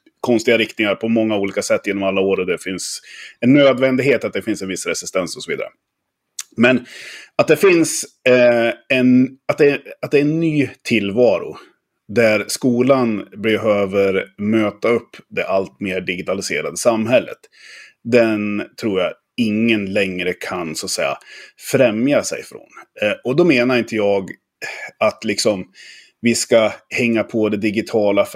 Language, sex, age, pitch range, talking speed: Swedish, male, 30-49, 105-135 Hz, 155 wpm